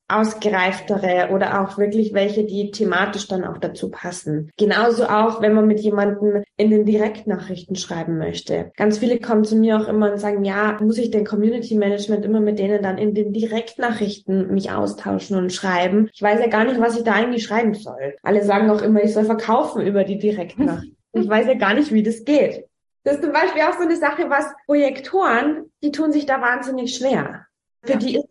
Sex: female